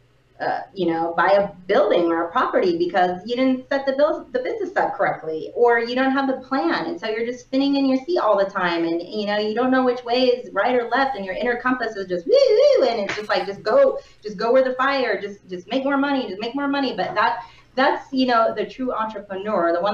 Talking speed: 255 wpm